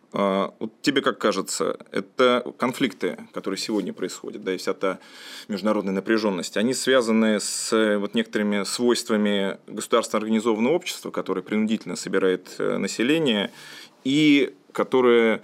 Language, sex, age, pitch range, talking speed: Russian, male, 20-39, 100-125 Hz, 115 wpm